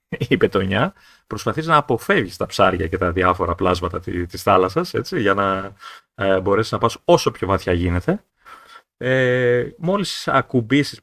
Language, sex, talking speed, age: Greek, male, 145 wpm, 30-49